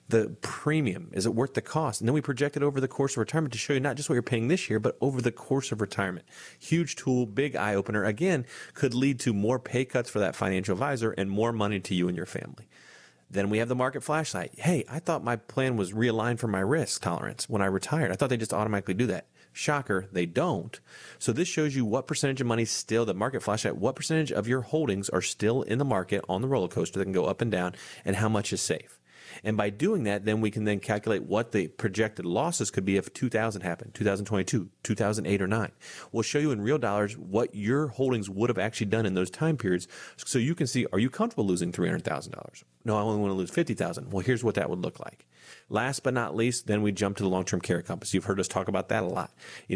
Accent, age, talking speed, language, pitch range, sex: American, 30-49, 250 wpm, English, 100-135 Hz, male